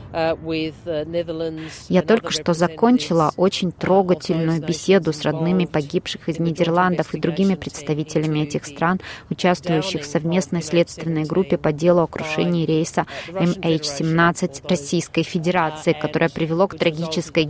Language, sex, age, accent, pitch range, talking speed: Russian, female, 20-39, native, 160-190 Hz, 115 wpm